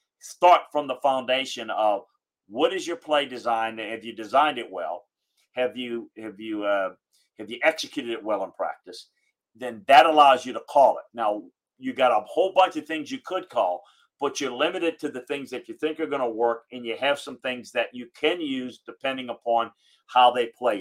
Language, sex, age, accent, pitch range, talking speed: English, male, 50-69, American, 125-165 Hz, 210 wpm